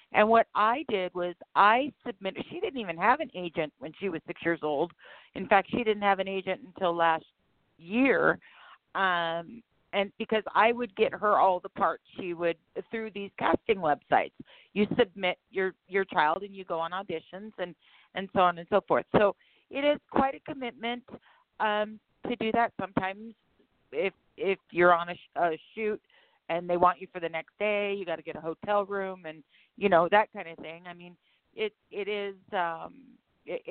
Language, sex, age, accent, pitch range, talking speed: English, female, 40-59, American, 175-220 Hz, 190 wpm